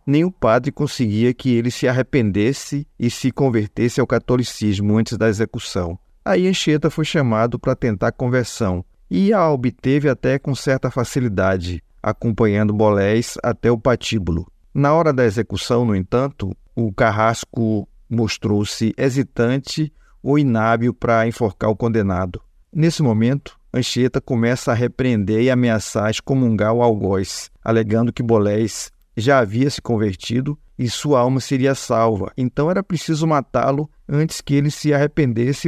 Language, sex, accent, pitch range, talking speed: Portuguese, male, Brazilian, 110-135 Hz, 140 wpm